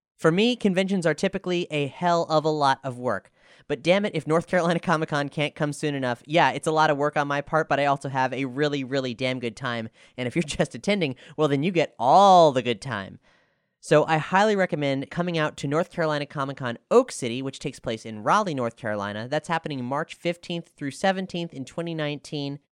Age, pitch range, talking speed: 30-49, 140-175 Hz, 215 wpm